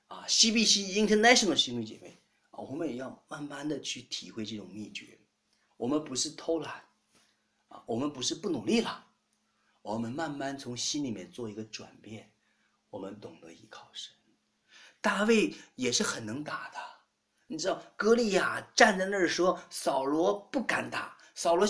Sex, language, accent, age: male, Chinese, native, 30-49